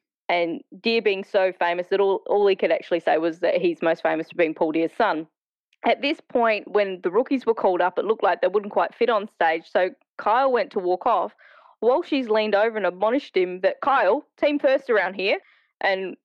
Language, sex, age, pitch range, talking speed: English, female, 20-39, 190-275 Hz, 220 wpm